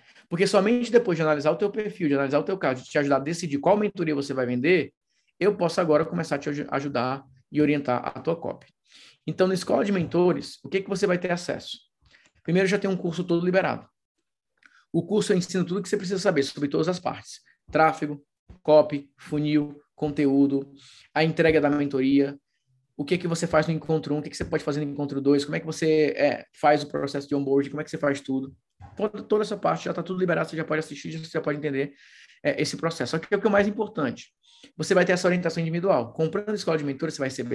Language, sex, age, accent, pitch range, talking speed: Portuguese, male, 20-39, Brazilian, 140-180 Hz, 235 wpm